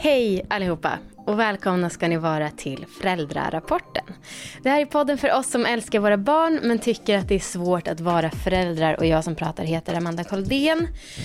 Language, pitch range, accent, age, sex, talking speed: English, 165-225 Hz, Swedish, 20-39, female, 185 wpm